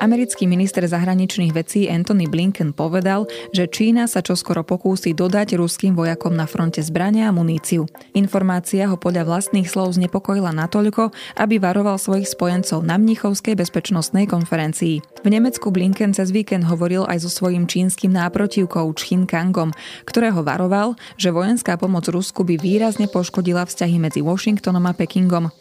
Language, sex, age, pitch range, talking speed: Slovak, female, 20-39, 170-195 Hz, 150 wpm